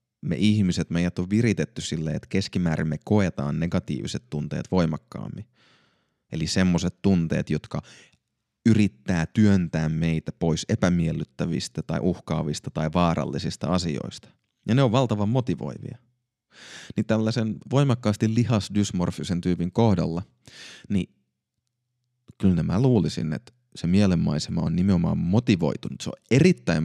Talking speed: 115 wpm